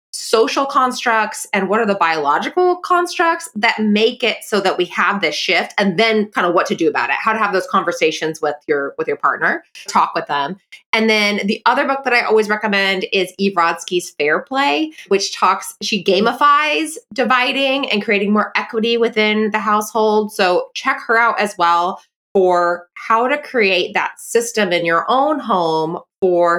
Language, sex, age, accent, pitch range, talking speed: English, female, 20-39, American, 190-265 Hz, 185 wpm